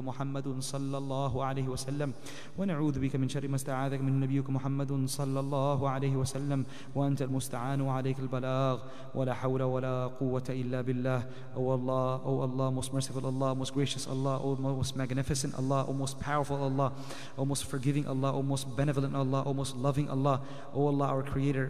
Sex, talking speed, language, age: male, 200 wpm, English, 30-49